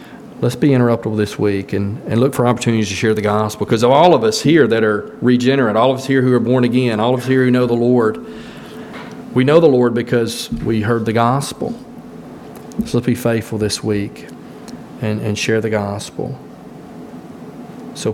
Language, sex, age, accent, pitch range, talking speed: English, male, 40-59, American, 110-130 Hz, 200 wpm